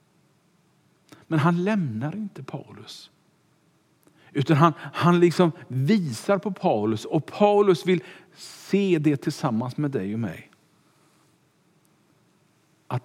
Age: 50-69